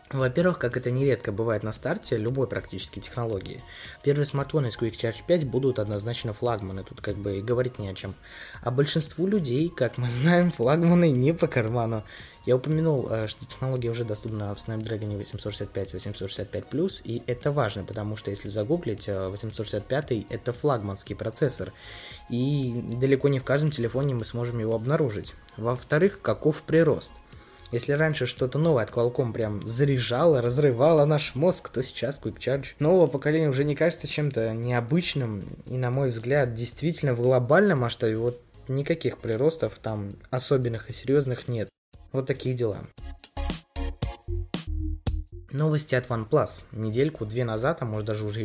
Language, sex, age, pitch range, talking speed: Russian, male, 20-39, 110-145 Hz, 150 wpm